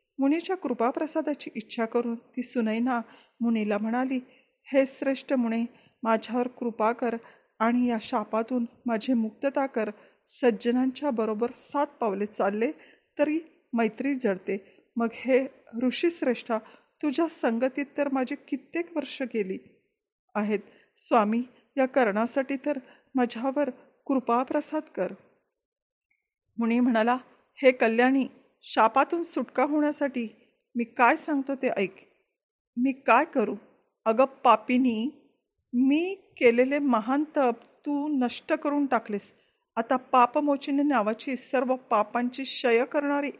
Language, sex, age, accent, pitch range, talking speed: Marathi, female, 40-59, native, 230-285 Hz, 110 wpm